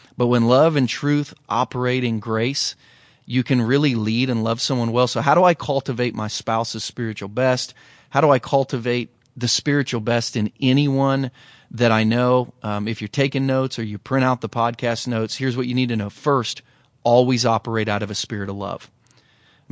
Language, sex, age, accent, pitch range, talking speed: English, male, 30-49, American, 115-135 Hz, 200 wpm